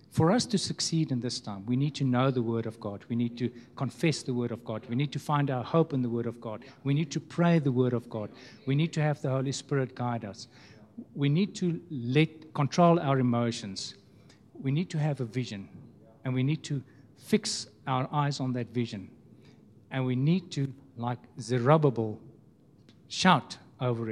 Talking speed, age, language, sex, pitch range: 205 wpm, 60-79, English, male, 125-155 Hz